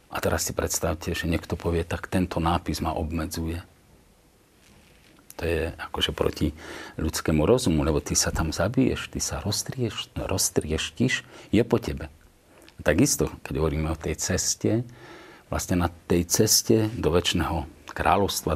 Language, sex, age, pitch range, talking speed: Slovak, male, 50-69, 80-105 Hz, 145 wpm